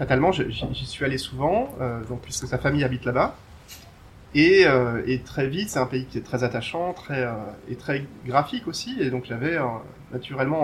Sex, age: male, 30-49